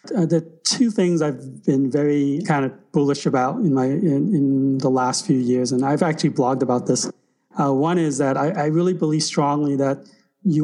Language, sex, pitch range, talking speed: English, male, 135-165 Hz, 195 wpm